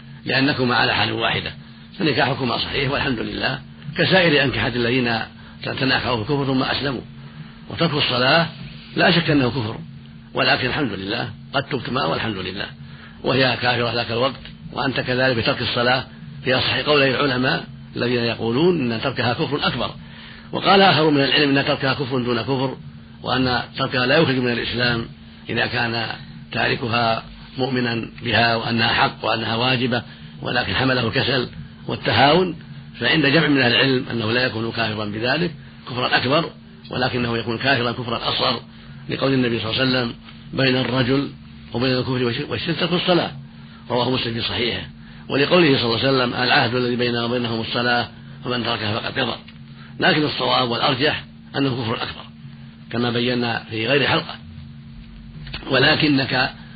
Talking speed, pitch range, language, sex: 140 wpm, 110-135 Hz, Arabic, male